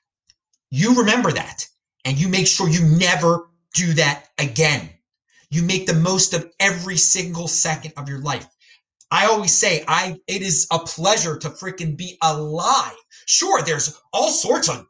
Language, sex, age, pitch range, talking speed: English, male, 30-49, 160-245 Hz, 160 wpm